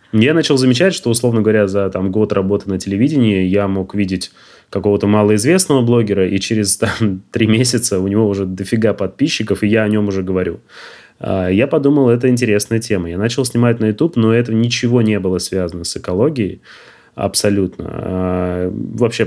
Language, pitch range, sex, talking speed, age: Russian, 95-115 Hz, male, 160 wpm, 20-39